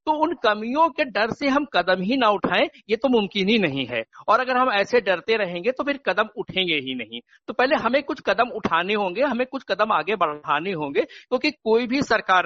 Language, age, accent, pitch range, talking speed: Hindi, 60-79, native, 165-235 Hz, 220 wpm